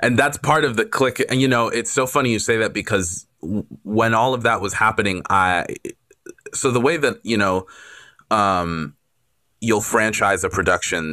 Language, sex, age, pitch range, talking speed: English, male, 20-39, 95-120 Hz, 185 wpm